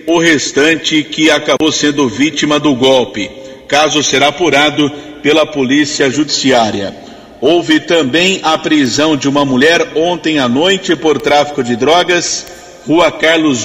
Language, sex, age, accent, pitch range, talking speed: Portuguese, male, 50-69, Brazilian, 140-170 Hz, 130 wpm